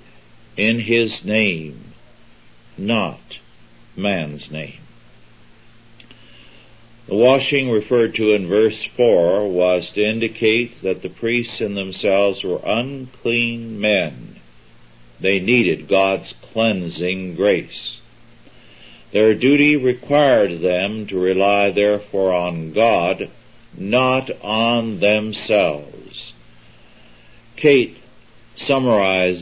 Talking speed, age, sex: 90 wpm, 60-79, male